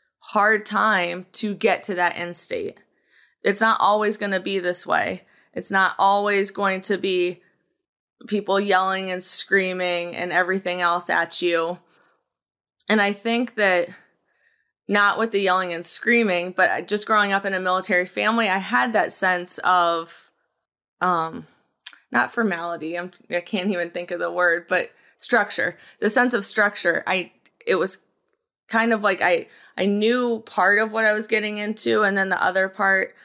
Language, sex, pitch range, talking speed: English, female, 180-210 Hz, 165 wpm